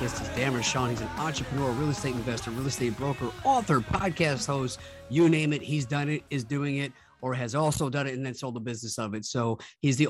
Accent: American